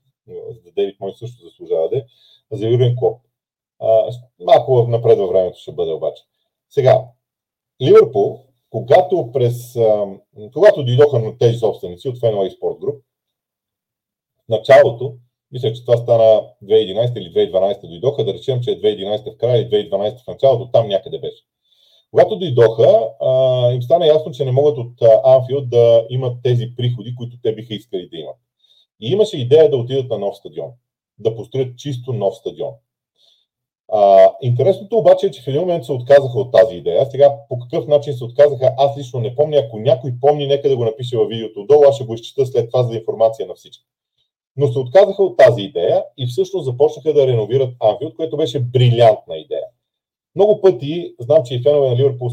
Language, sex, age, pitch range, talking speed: Bulgarian, male, 40-59, 120-150 Hz, 180 wpm